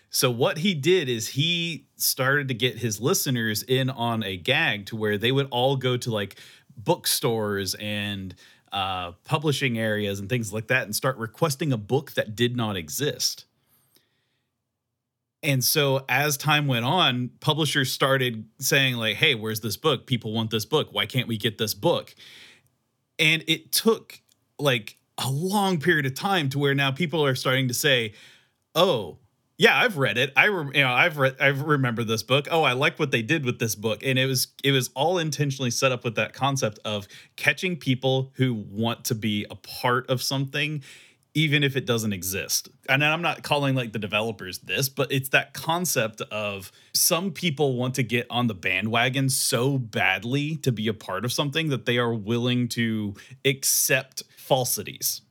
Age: 30-49